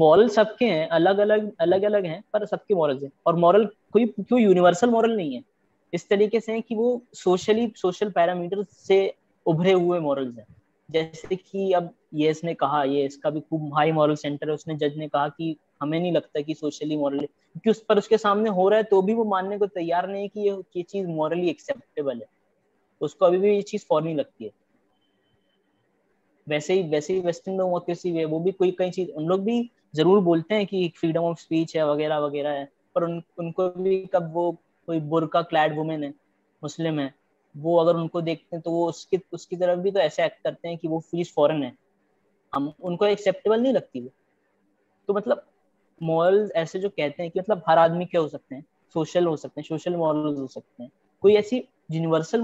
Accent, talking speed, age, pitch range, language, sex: native, 205 wpm, 20-39, 155-195 Hz, Hindi, female